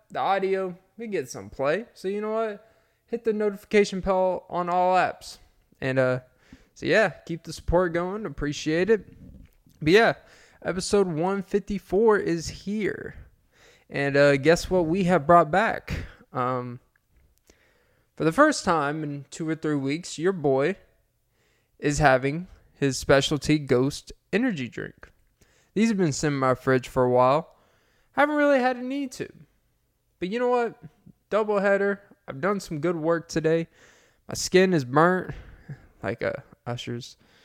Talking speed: 150 wpm